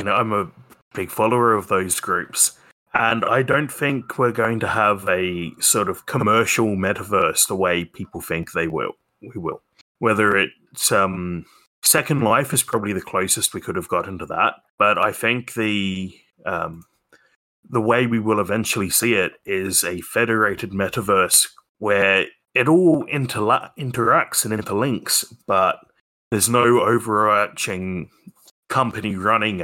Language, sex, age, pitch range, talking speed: English, male, 30-49, 95-120 Hz, 150 wpm